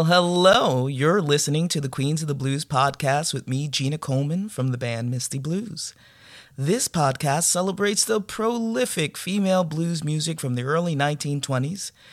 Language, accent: English, American